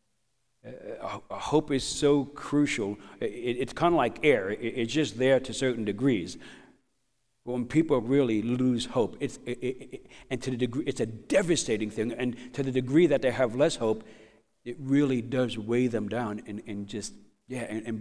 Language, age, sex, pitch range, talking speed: English, 60-79, male, 115-130 Hz, 195 wpm